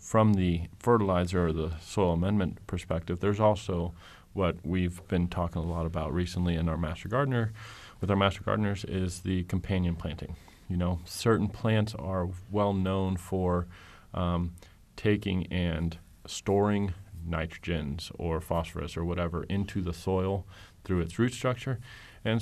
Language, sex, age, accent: English, male, 30-49, American